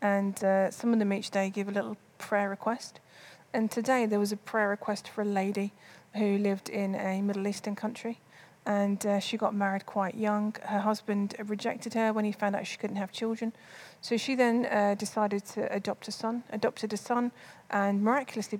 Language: English